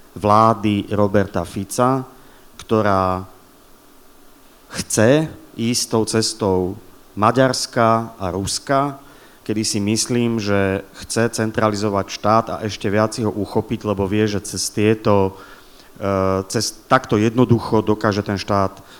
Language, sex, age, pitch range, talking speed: Slovak, male, 30-49, 100-120 Hz, 110 wpm